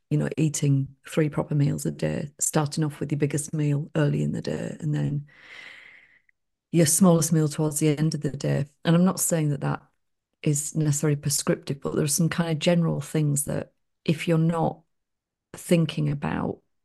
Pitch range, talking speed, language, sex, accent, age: 145-170 Hz, 185 wpm, English, female, British, 40-59